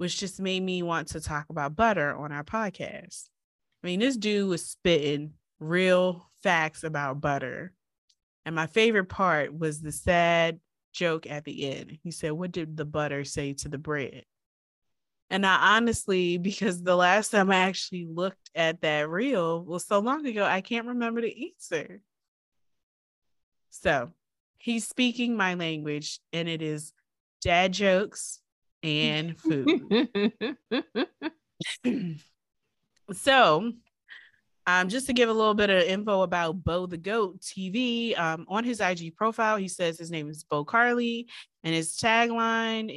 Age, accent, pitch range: 20-39, American, 155-215 Hz